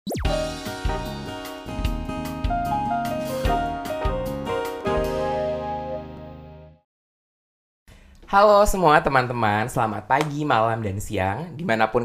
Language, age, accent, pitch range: Indonesian, 20-39, native, 105-120 Hz